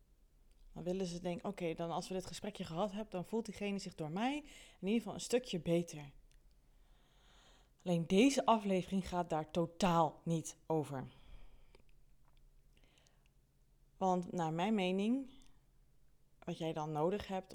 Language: Dutch